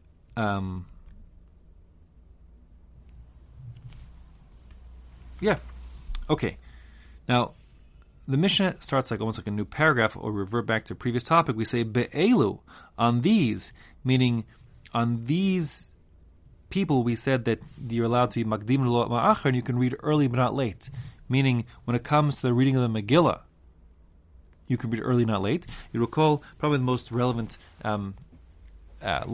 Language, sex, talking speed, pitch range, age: English, male, 140 wpm, 90-125 Hz, 30-49